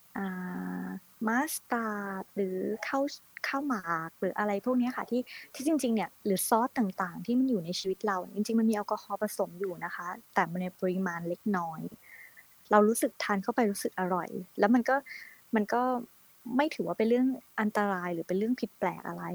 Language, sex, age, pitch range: Thai, female, 20-39, 185-225 Hz